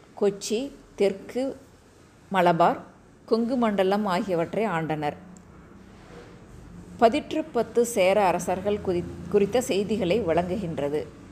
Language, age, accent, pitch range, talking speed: Tamil, 30-49, native, 175-230 Hz, 70 wpm